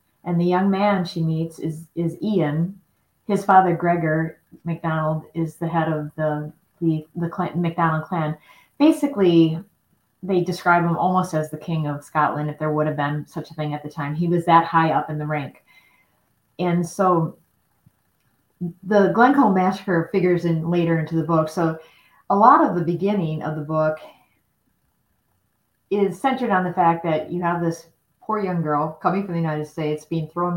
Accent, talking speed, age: American, 180 wpm, 30-49